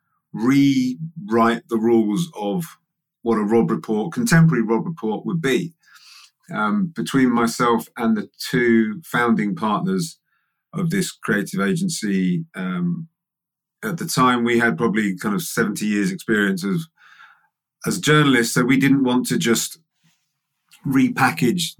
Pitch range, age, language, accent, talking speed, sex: 115-170 Hz, 30-49, English, British, 130 wpm, male